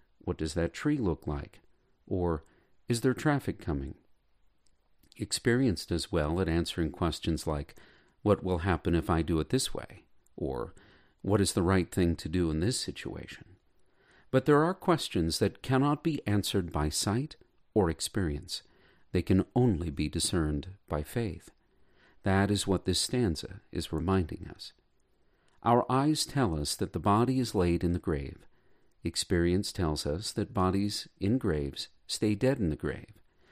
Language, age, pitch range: English, 50-69, 85-120 Hz